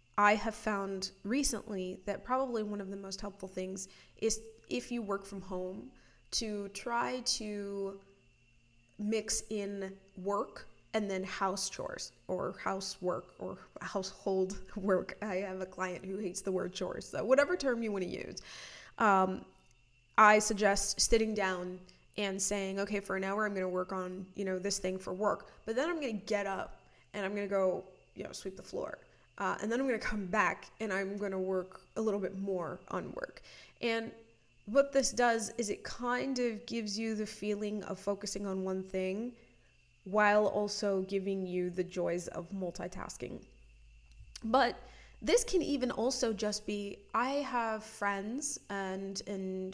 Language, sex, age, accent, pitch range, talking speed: English, female, 20-39, American, 190-220 Hz, 175 wpm